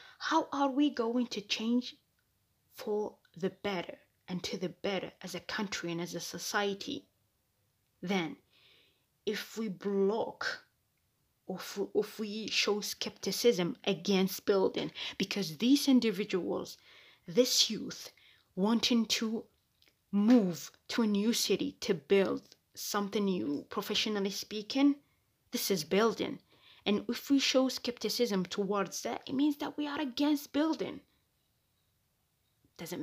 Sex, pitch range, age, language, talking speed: female, 190-240 Hz, 20-39, English, 120 wpm